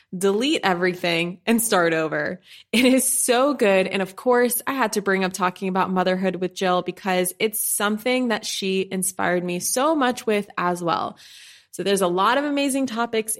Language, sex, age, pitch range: English, female, 20-39, 185-235 Hz